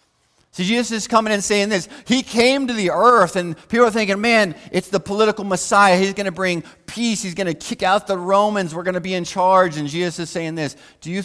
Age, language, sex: 40-59, English, male